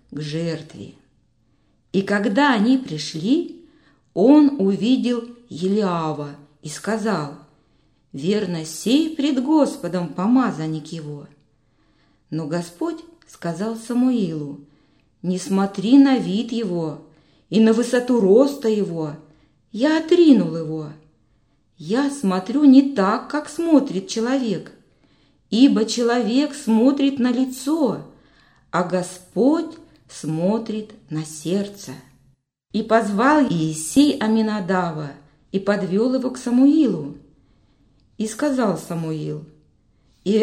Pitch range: 155-250 Hz